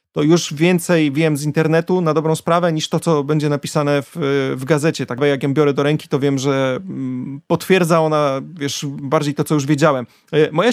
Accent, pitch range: native, 145-175 Hz